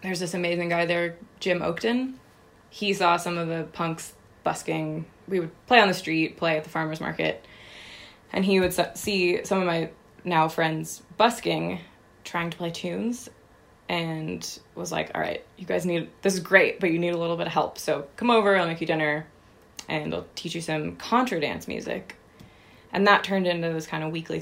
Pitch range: 160-195 Hz